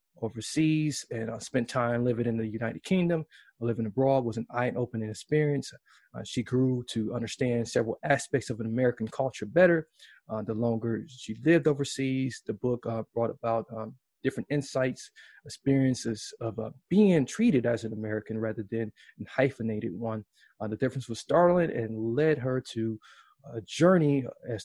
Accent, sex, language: American, male, English